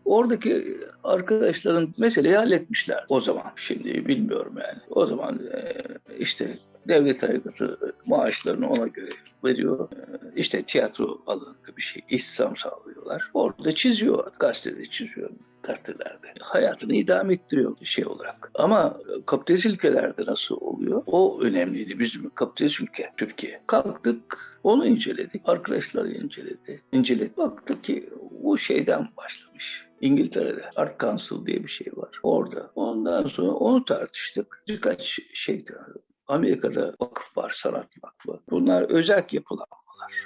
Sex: male